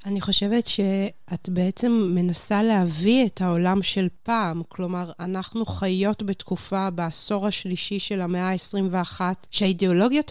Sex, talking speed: female, 115 wpm